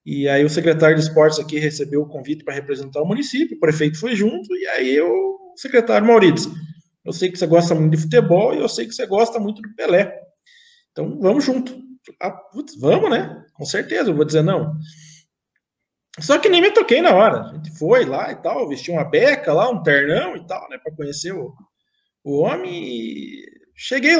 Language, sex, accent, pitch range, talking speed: Portuguese, male, Brazilian, 155-255 Hz, 200 wpm